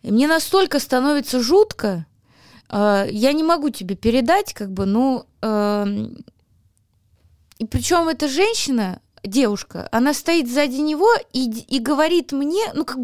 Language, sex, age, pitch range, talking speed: Russian, female, 20-39, 225-320 Hz, 135 wpm